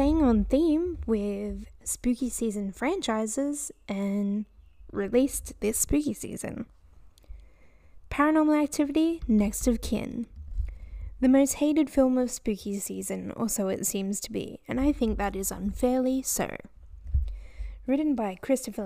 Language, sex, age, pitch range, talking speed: English, female, 10-29, 195-260 Hz, 125 wpm